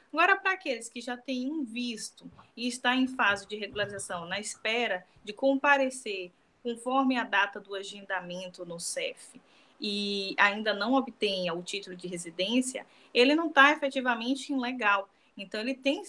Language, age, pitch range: Portuguese, 20-39, 205-265 Hz